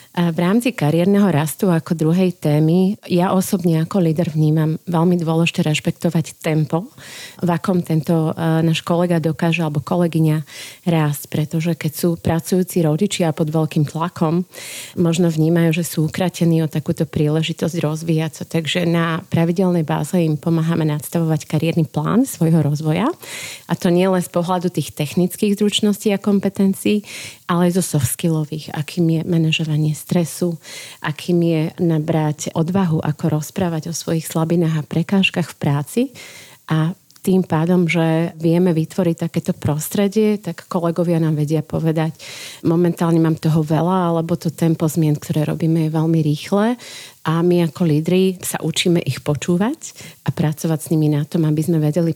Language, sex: Slovak, female